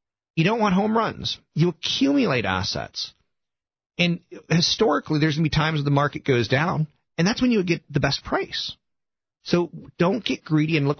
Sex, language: male, English